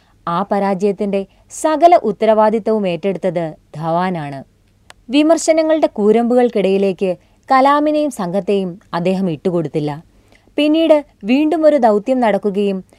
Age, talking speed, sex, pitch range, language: 20-39, 80 wpm, female, 175-260 Hz, Malayalam